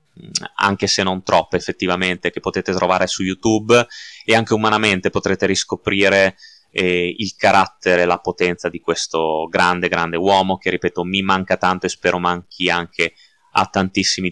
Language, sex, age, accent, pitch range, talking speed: Italian, male, 20-39, native, 90-100 Hz, 155 wpm